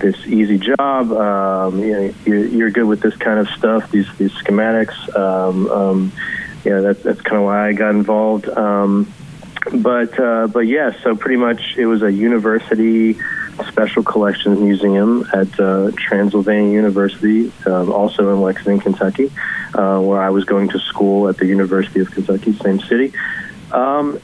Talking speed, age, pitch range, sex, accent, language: 160 wpm, 30-49, 100-110 Hz, male, American, English